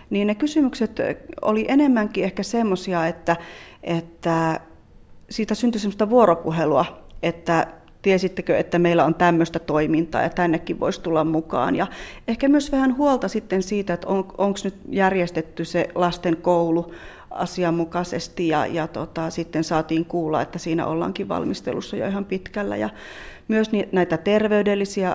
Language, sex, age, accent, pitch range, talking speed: Finnish, female, 30-49, native, 165-195 Hz, 125 wpm